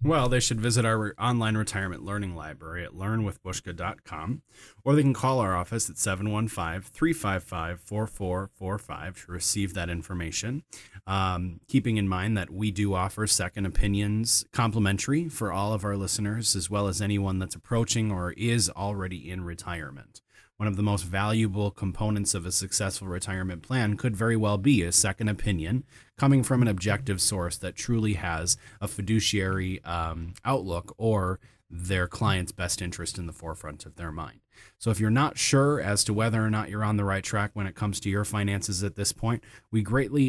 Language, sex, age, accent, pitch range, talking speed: English, male, 30-49, American, 95-110 Hz, 175 wpm